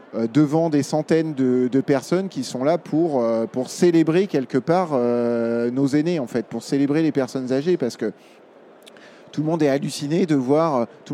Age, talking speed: 20-39, 185 wpm